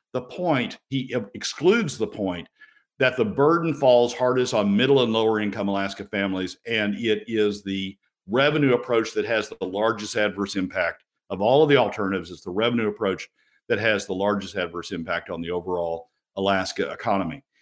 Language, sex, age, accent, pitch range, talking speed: English, male, 50-69, American, 105-150 Hz, 170 wpm